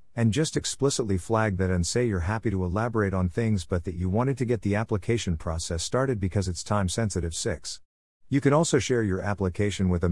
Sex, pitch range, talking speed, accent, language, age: male, 90-115 Hz, 210 wpm, American, English, 50-69